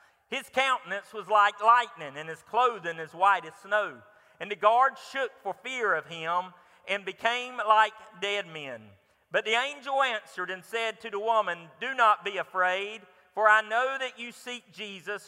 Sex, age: male, 40-59